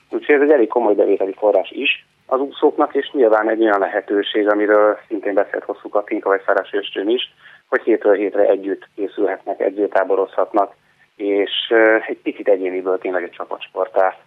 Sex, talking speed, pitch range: male, 155 wpm, 100-140 Hz